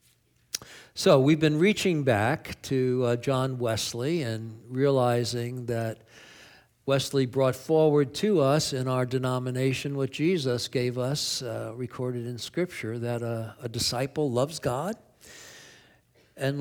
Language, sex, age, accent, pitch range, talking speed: English, male, 60-79, American, 125-165 Hz, 125 wpm